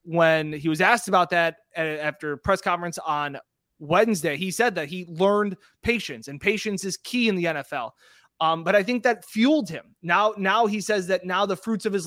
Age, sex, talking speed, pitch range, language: 20-39, male, 210 wpm, 170-215 Hz, English